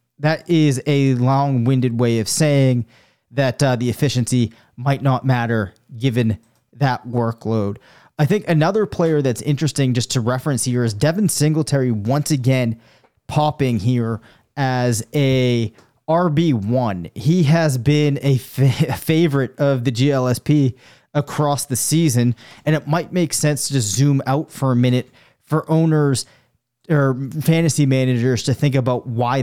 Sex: male